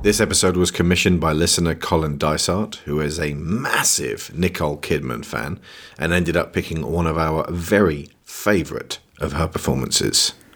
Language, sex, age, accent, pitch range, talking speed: English, male, 40-59, British, 75-95 Hz, 155 wpm